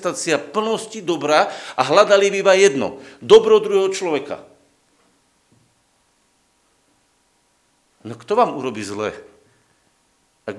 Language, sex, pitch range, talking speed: Slovak, male, 125-185 Hz, 90 wpm